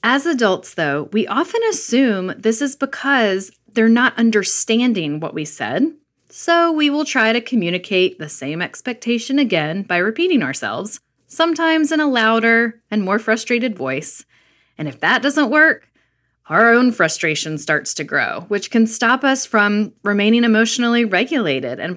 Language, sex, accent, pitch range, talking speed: English, female, American, 175-235 Hz, 155 wpm